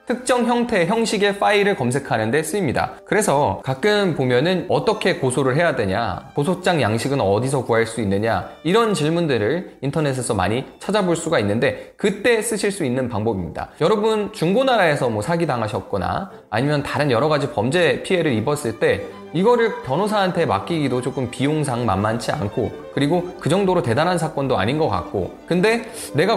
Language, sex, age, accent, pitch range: Korean, male, 20-39, native, 125-200 Hz